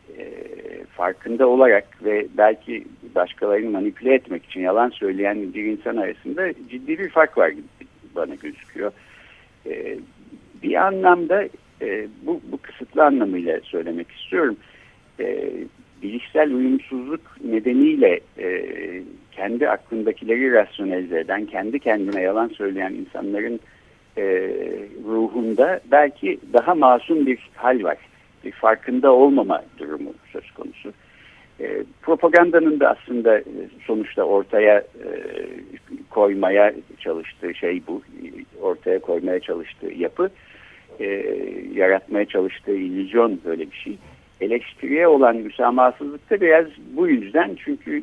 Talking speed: 110 wpm